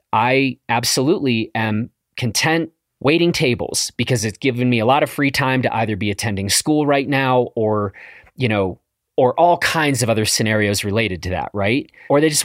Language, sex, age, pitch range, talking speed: English, male, 30-49, 110-150 Hz, 185 wpm